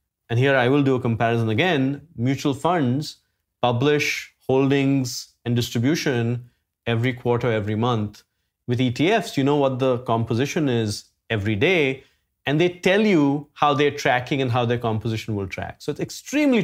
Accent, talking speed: Indian, 160 wpm